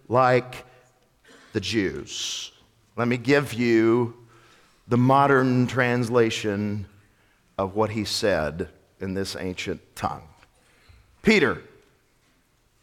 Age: 50-69